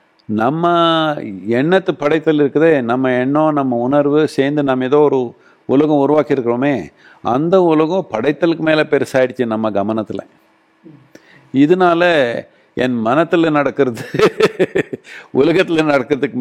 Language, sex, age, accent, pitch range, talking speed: Tamil, male, 50-69, native, 115-150 Hz, 100 wpm